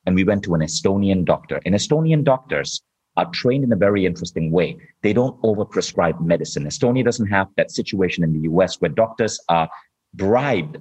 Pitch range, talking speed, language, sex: 90-125 Hz, 185 wpm, English, male